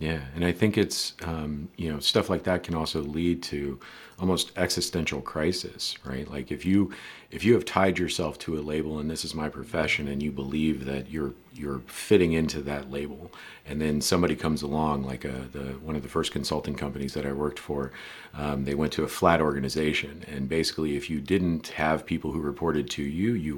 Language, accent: English, American